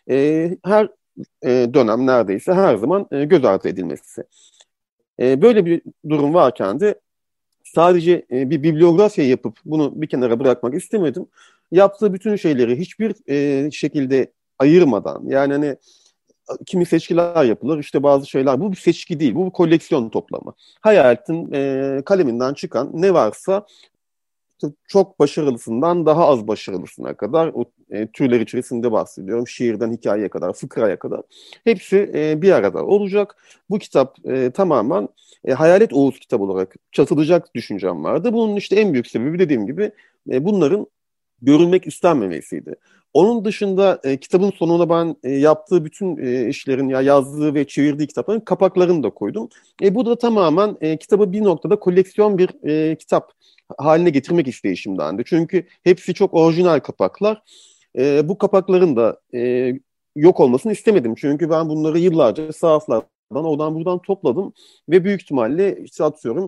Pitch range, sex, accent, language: 140-195 Hz, male, native, Turkish